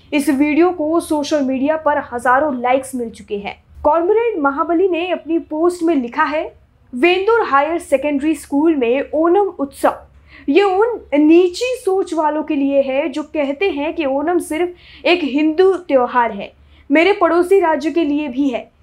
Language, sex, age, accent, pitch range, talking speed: Hindi, female, 20-39, native, 260-335 Hz, 165 wpm